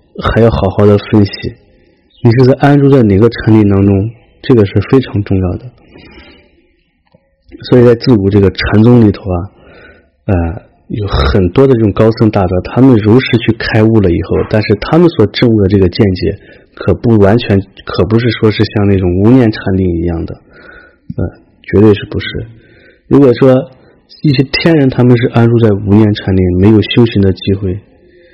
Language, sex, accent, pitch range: English, male, Chinese, 95-115 Hz